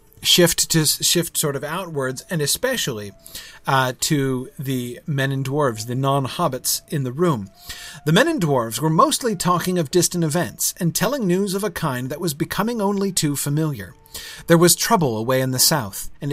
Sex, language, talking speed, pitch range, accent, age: male, English, 180 wpm, 135-185 Hz, American, 40-59